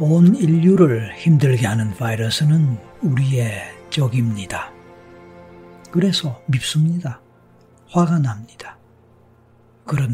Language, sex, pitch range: Korean, male, 115-150 Hz